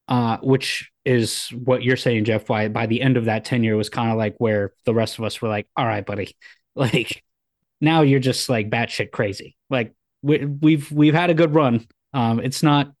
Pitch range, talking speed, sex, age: 110-135 Hz, 210 wpm, male, 20-39